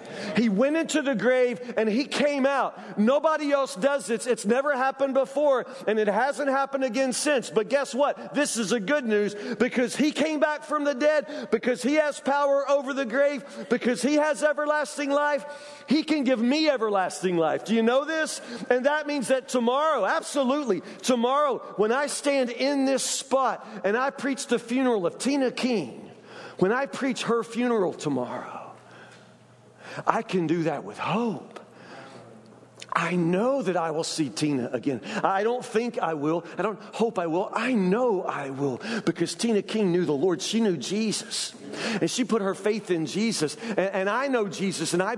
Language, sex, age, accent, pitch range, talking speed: English, male, 40-59, American, 200-270 Hz, 185 wpm